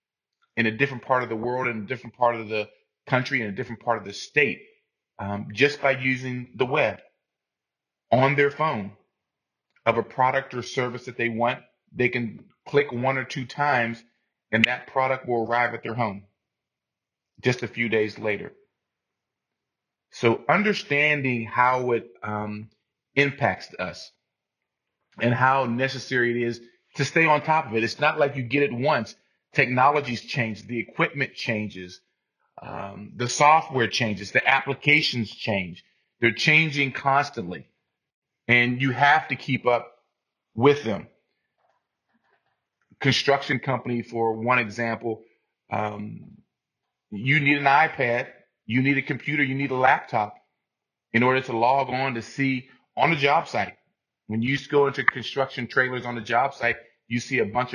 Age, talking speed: 30-49, 155 wpm